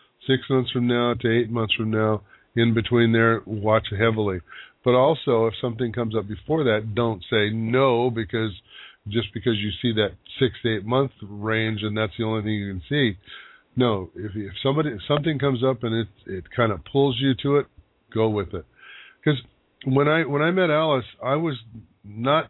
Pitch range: 105-130 Hz